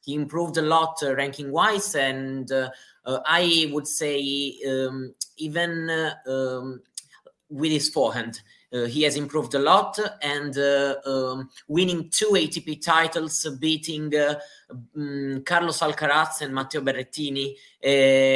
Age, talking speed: 20-39, 135 wpm